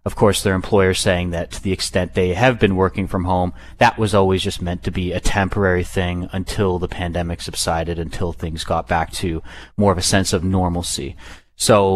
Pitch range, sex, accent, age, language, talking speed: 90-100 Hz, male, American, 30-49, English, 205 wpm